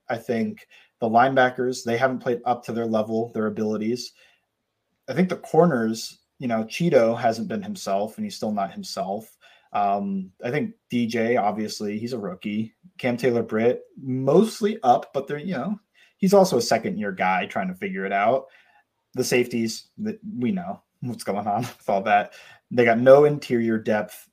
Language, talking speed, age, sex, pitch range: English, 175 wpm, 30-49, male, 110-175 Hz